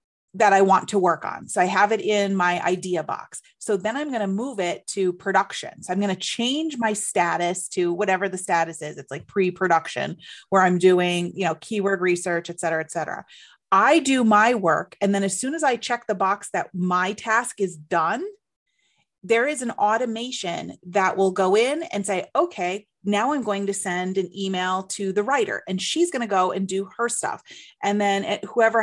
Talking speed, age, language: 210 wpm, 30-49, English